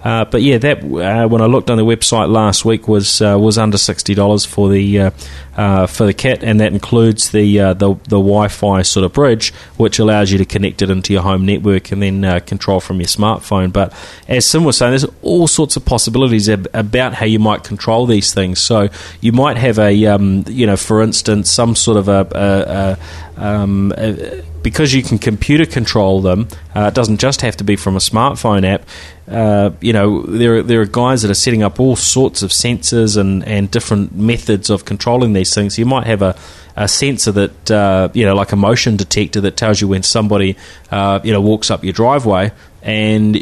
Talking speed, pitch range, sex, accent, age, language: 215 wpm, 95-115 Hz, male, Australian, 30-49, English